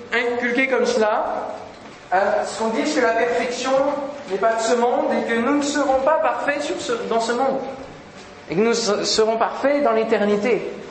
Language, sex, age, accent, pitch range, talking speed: French, male, 40-59, French, 220-285 Hz, 175 wpm